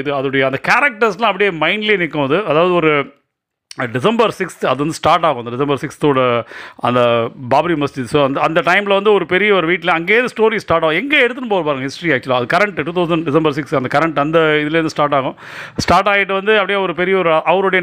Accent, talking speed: native, 190 wpm